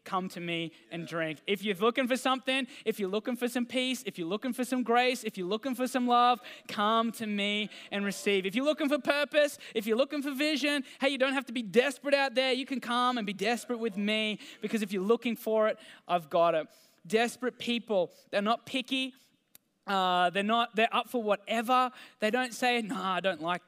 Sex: male